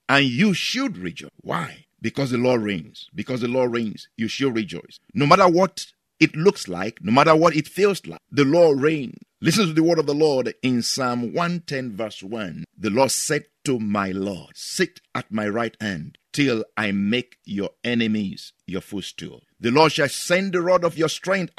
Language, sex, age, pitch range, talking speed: English, male, 50-69, 135-175 Hz, 195 wpm